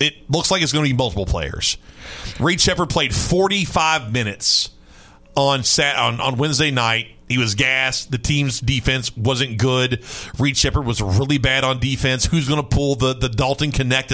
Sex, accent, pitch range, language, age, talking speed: male, American, 105-135 Hz, English, 40-59, 185 wpm